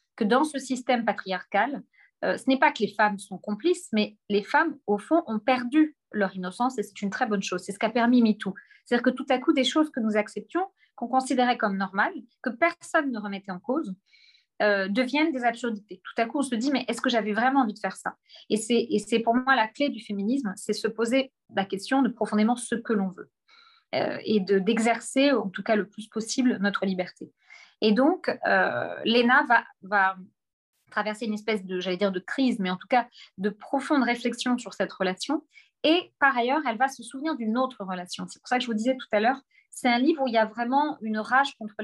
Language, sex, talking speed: French, female, 230 wpm